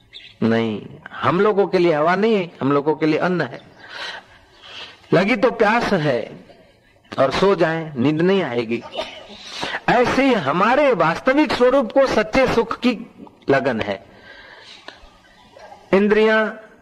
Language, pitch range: Hindi, 145-215 Hz